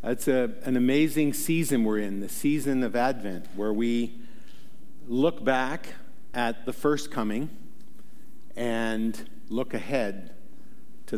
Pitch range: 110-140 Hz